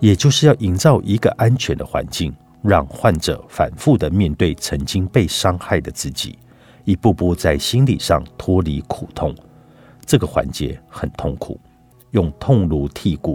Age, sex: 50-69, male